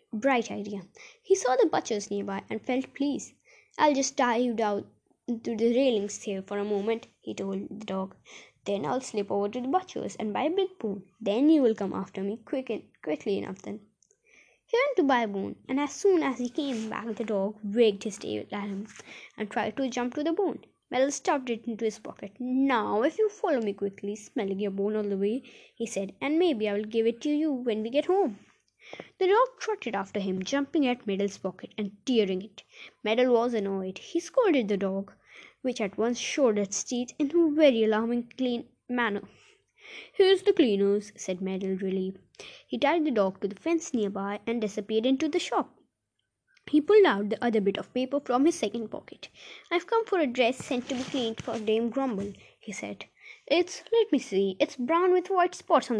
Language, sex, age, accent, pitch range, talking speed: Hindi, female, 20-39, native, 205-290 Hz, 210 wpm